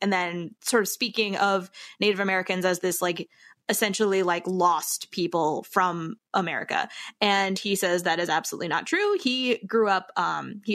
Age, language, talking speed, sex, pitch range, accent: 20-39, English, 165 wpm, female, 185-265 Hz, American